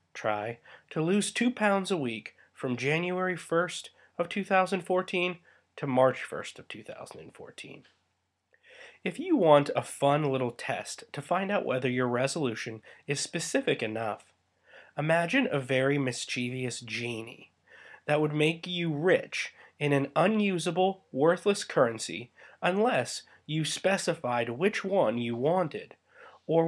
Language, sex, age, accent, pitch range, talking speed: English, male, 30-49, American, 135-190 Hz, 125 wpm